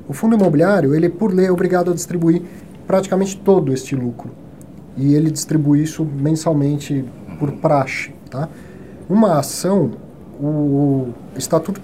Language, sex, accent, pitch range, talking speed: Portuguese, male, Brazilian, 145-180 Hz, 135 wpm